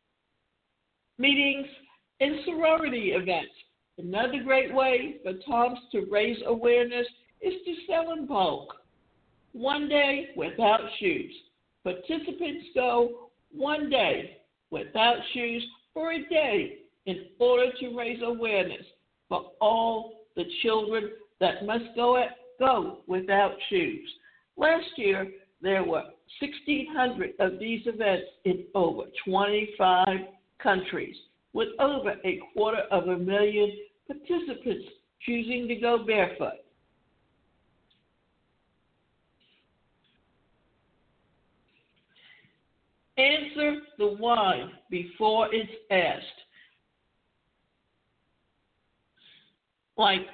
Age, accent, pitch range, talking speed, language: 60-79, American, 215-300 Hz, 90 wpm, English